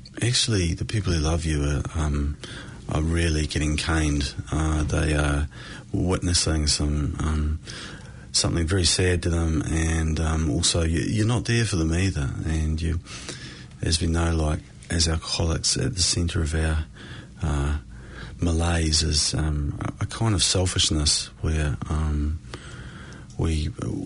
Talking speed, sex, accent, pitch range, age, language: 140 wpm, male, Australian, 75-95 Hz, 30-49, English